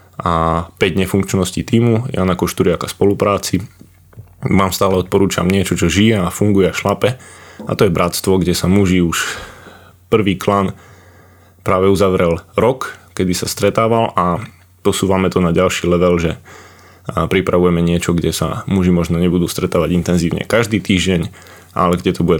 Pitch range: 90-100 Hz